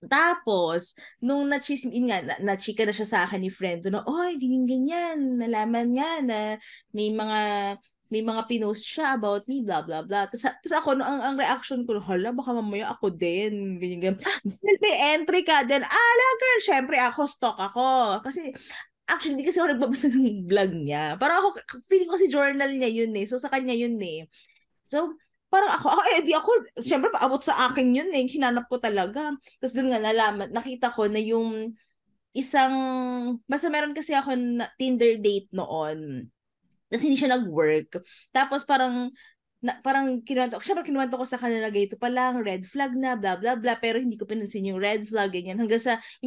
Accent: native